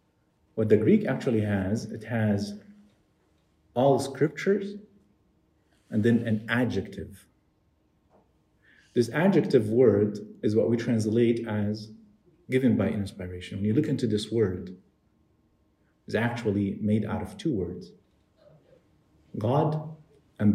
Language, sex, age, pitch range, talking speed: English, male, 50-69, 105-135 Hz, 115 wpm